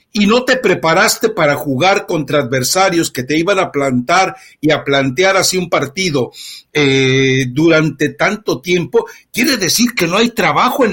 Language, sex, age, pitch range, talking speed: Spanish, male, 60-79, 150-205 Hz, 165 wpm